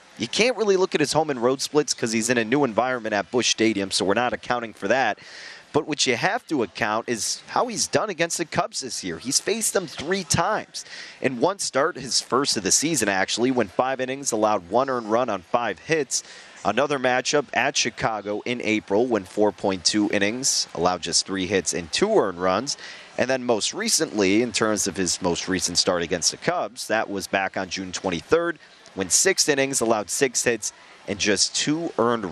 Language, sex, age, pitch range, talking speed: English, male, 30-49, 105-150 Hz, 205 wpm